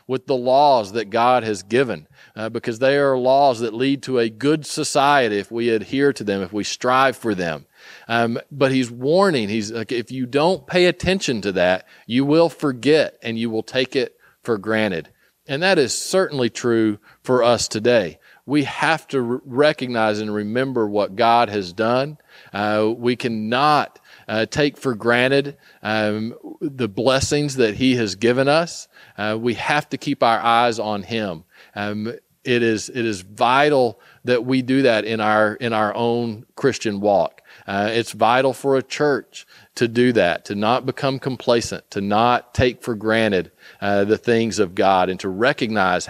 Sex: male